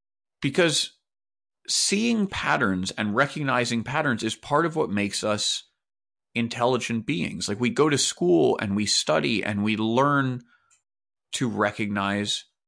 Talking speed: 130 wpm